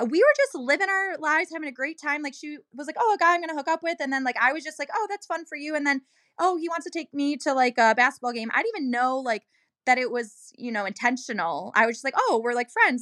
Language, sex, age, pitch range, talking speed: English, female, 10-29, 220-290 Hz, 310 wpm